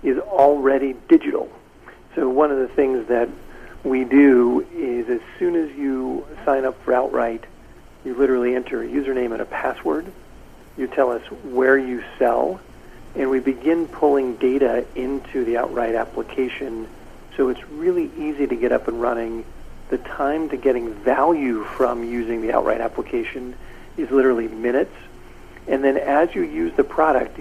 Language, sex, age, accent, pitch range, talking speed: English, male, 50-69, American, 115-140 Hz, 160 wpm